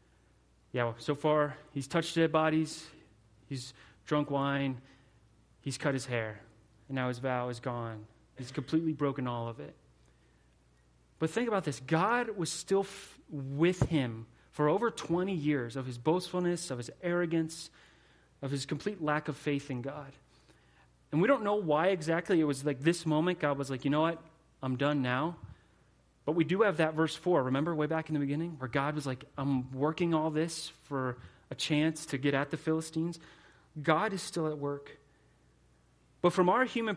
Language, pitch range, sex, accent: English, 135-175 Hz, male, American